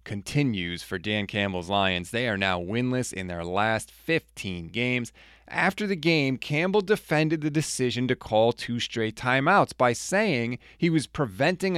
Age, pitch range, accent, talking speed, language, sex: 30-49, 105-155 Hz, American, 160 wpm, English, male